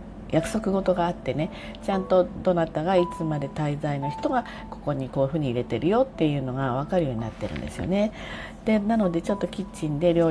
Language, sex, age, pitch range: Japanese, female, 40-59, 145-205 Hz